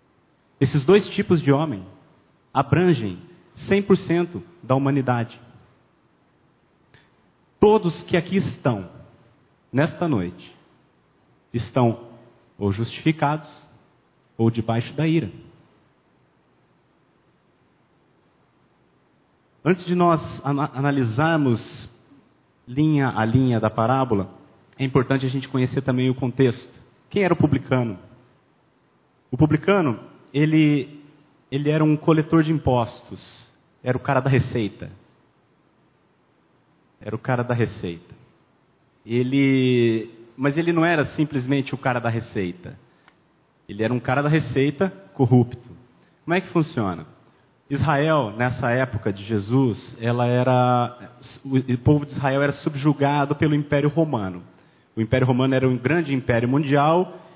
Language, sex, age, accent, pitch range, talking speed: Portuguese, male, 40-59, Brazilian, 120-150 Hz, 110 wpm